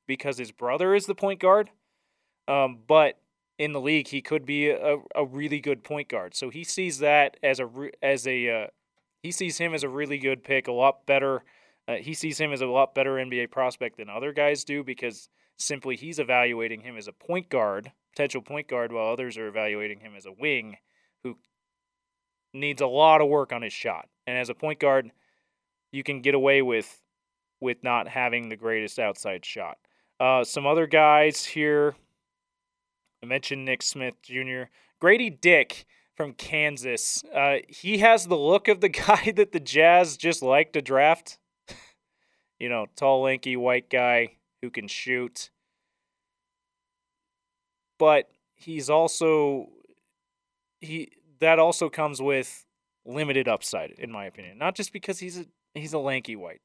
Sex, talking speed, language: male, 170 wpm, English